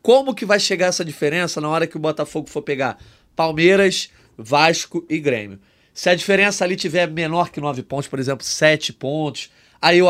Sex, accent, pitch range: male, Brazilian, 145-180 Hz